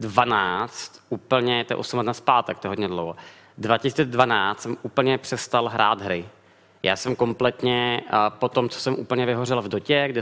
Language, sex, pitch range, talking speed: Czech, male, 110-130 Hz, 170 wpm